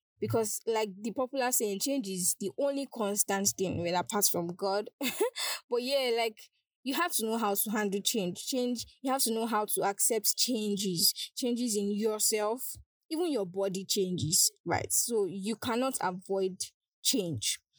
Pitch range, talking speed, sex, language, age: 195-250 Hz, 160 wpm, female, English, 10-29